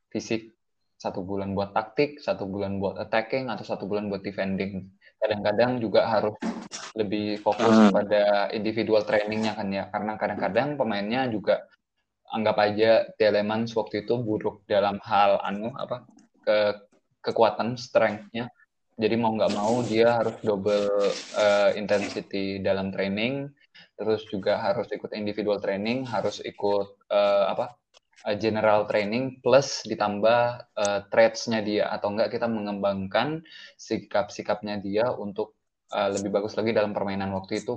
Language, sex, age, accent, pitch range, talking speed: Indonesian, male, 20-39, native, 100-115 Hz, 135 wpm